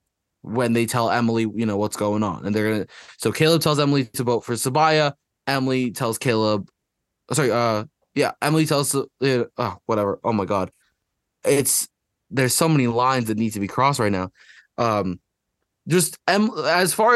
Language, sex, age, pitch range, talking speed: English, male, 20-39, 120-160 Hz, 180 wpm